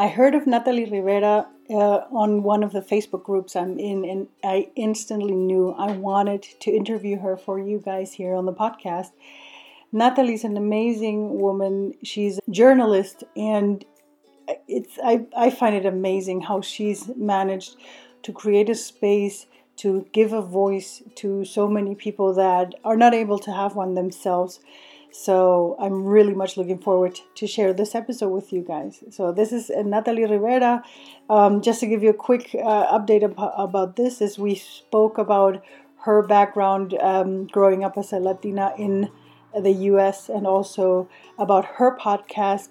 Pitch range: 190-220 Hz